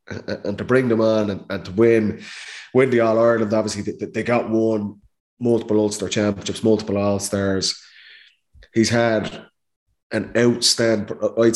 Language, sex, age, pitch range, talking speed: English, male, 20-39, 100-115 Hz, 140 wpm